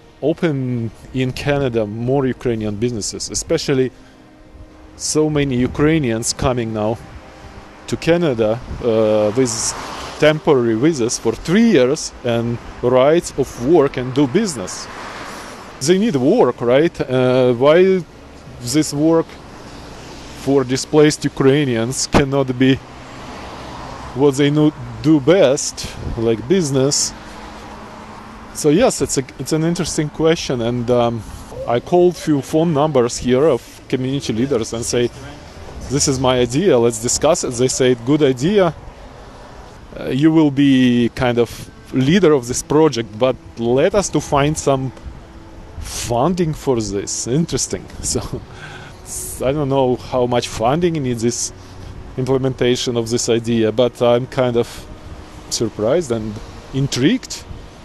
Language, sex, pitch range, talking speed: Ukrainian, male, 115-145 Hz, 125 wpm